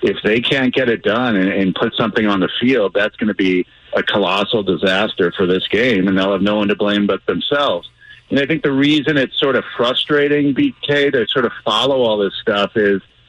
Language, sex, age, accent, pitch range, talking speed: English, male, 50-69, American, 100-125 Hz, 225 wpm